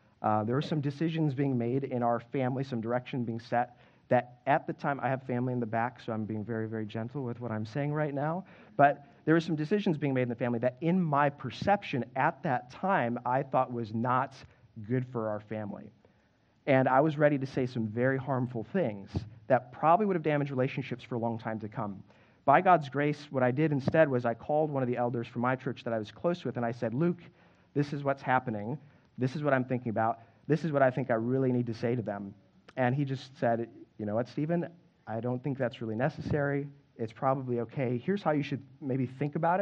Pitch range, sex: 120-145 Hz, male